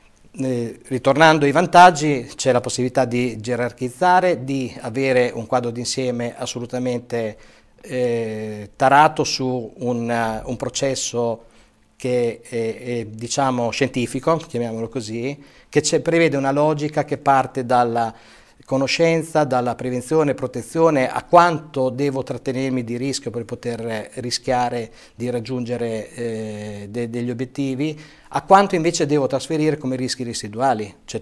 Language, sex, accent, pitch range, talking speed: Italian, male, native, 120-140 Hz, 115 wpm